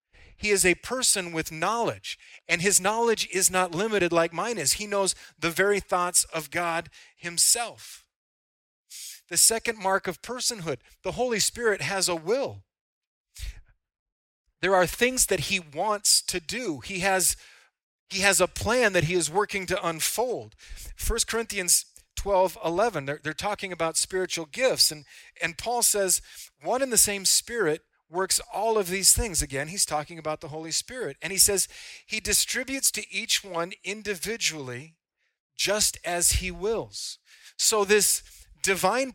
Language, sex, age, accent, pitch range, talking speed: English, male, 40-59, American, 165-215 Hz, 155 wpm